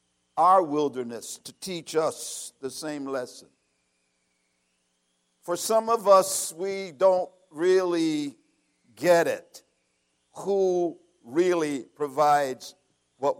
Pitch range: 125-205 Hz